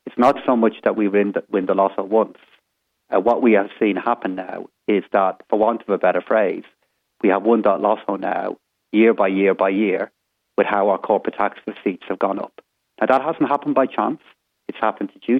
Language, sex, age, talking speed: English, male, 40-59, 220 wpm